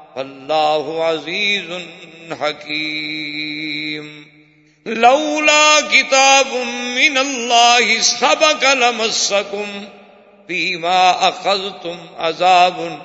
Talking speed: 60 wpm